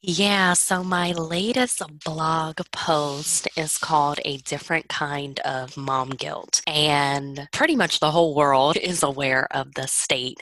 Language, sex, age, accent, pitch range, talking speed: English, female, 20-39, American, 130-155 Hz, 145 wpm